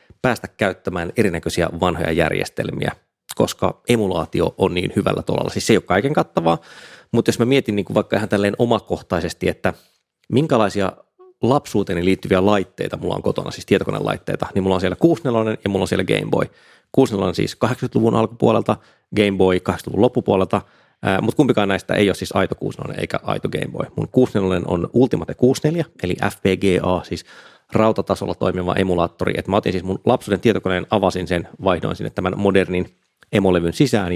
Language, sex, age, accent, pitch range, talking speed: Finnish, male, 30-49, native, 90-110 Hz, 165 wpm